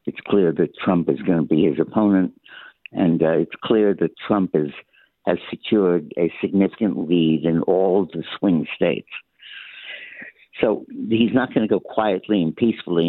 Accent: American